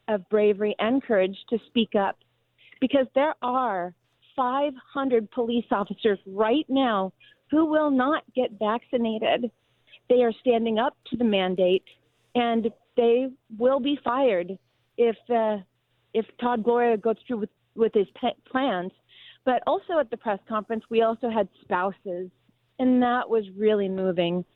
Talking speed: 145 wpm